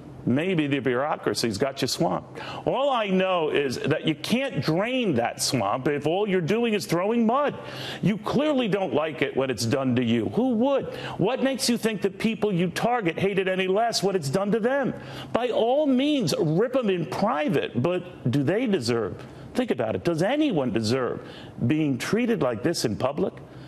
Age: 50-69